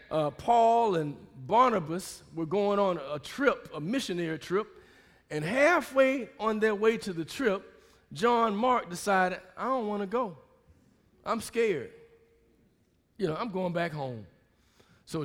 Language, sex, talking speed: English, male, 145 wpm